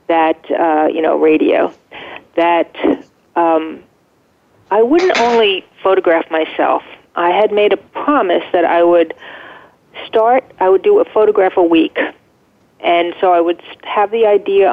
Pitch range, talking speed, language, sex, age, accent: 170-210 Hz, 145 wpm, English, female, 40-59, American